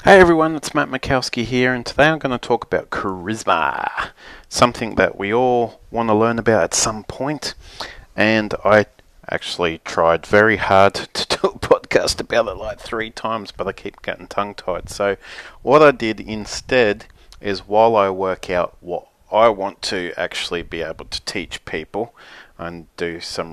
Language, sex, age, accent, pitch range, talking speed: English, male, 30-49, Australian, 95-120 Hz, 175 wpm